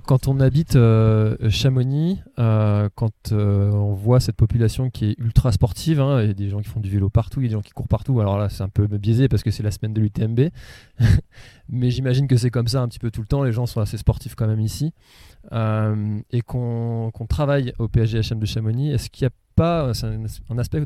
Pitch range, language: 110-130 Hz, French